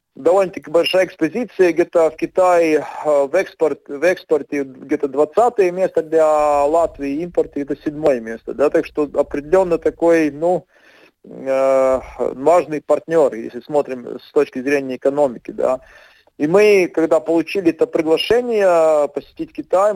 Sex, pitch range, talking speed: male, 140-180 Hz, 125 wpm